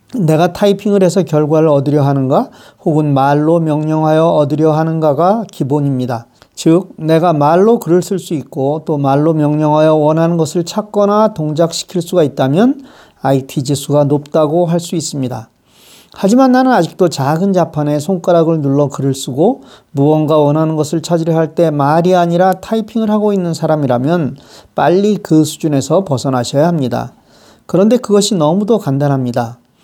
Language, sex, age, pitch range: Korean, male, 40-59, 145-190 Hz